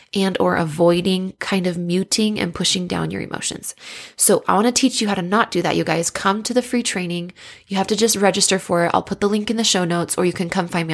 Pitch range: 175-225 Hz